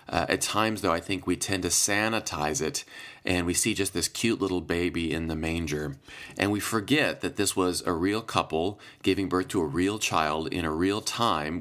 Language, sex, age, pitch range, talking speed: English, male, 30-49, 90-115 Hz, 210 wpm